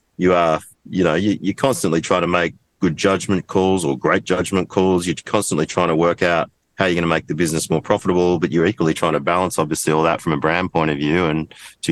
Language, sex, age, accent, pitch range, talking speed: English, male, 30-49, Australian, 80-90 Hz, 245 wpm